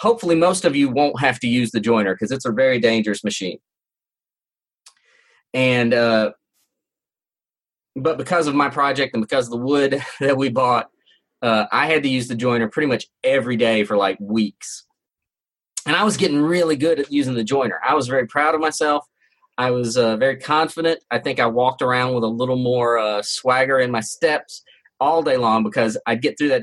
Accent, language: American, English